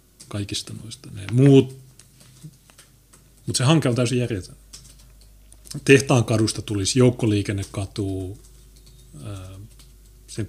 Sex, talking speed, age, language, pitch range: male, 85 wpm, 30-49, Finnish, 100-125 Hz